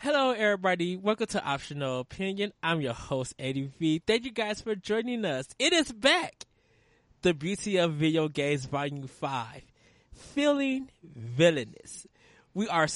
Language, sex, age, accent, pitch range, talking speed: English, male, 20-39, American, 135-200 Hz, 140 wpm